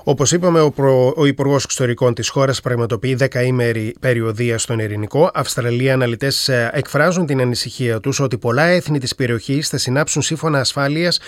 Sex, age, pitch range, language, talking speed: male, 30-49, 125-165 Hz, Greek, 145 wpm